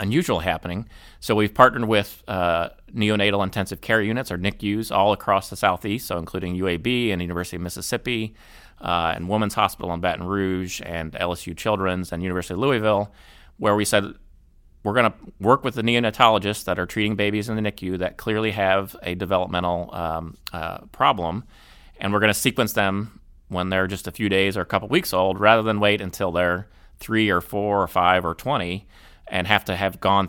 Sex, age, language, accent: male, 30-49, English, American